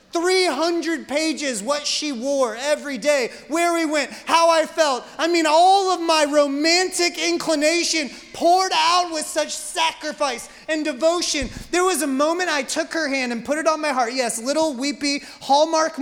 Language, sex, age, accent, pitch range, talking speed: English, male, 30-49, American, 280-340 Hz, 170 wpm